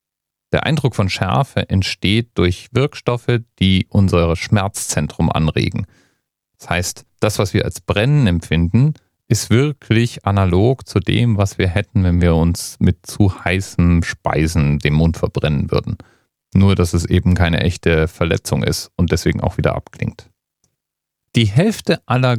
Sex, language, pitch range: male, German, 85-115 Hz